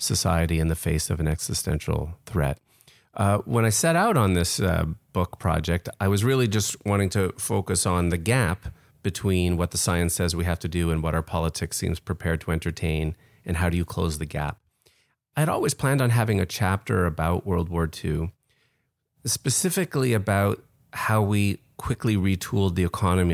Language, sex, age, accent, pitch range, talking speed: English, male, 30-49, American, 85-115 Hz, 185 wpm